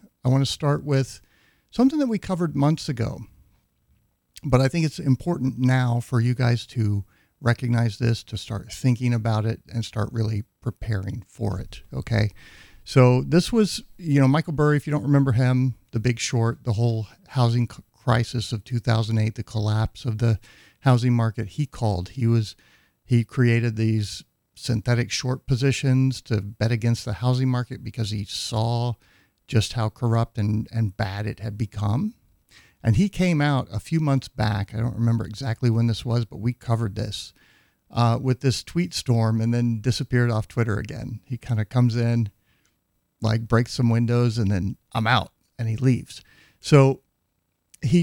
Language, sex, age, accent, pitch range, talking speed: English, male, 50-69, American, 110-130 Hz, 170 wpm